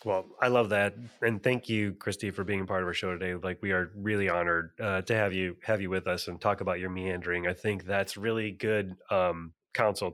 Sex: male